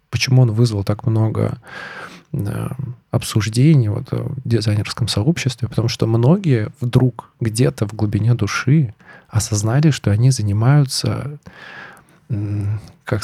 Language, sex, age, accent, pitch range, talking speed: Russian, male, 20-39, native, 110-130 Hz, 105 wpm